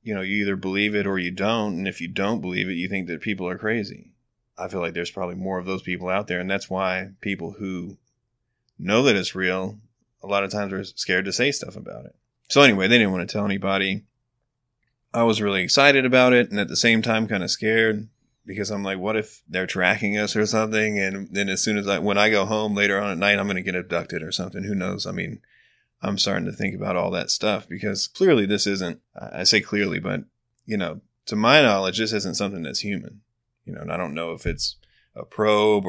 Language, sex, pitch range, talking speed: English, male, 95-105 Hz, 240 wpm